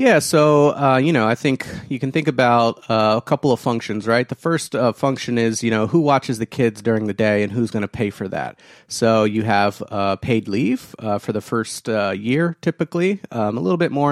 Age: 30-49